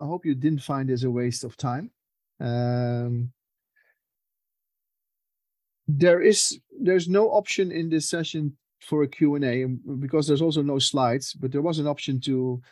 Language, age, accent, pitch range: German, 40-59, Dutch, 130-150 Hz